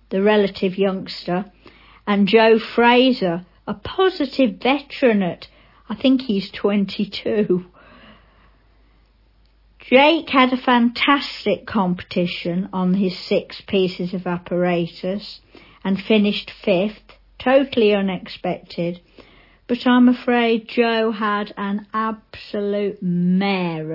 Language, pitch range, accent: English, 185-245 Hz, British